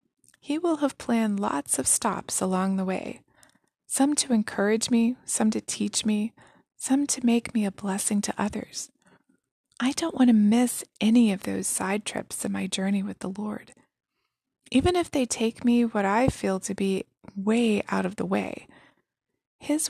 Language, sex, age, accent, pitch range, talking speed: English, female, 20-39, American, 205-255 Hz, 175 wpm